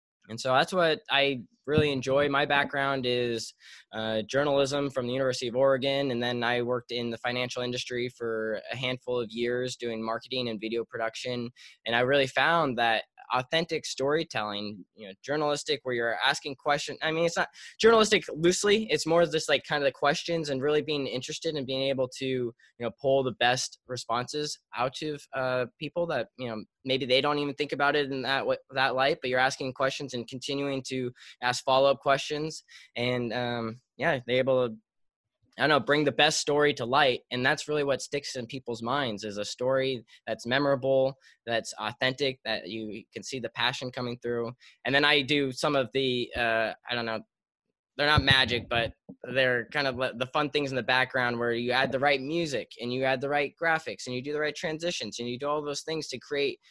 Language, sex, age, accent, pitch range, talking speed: English, male, 10-29, American, 120-145 Hz, 205 wpm